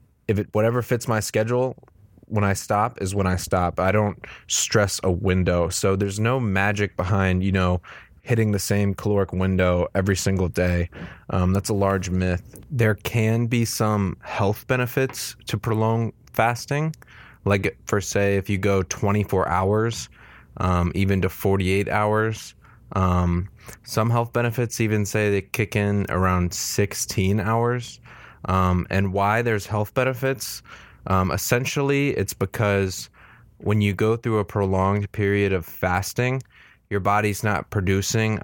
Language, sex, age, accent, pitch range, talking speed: English, male, 20-39, American, 95-110 Hz, 150 wpm